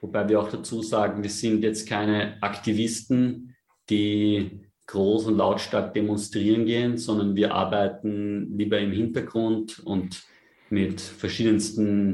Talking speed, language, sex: 125 wpm, German, male